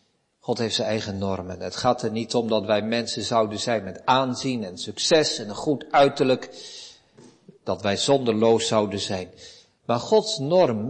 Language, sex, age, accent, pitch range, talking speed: Dutch, male, 50-69, Dutch, 110-170 Hz, 170 wpm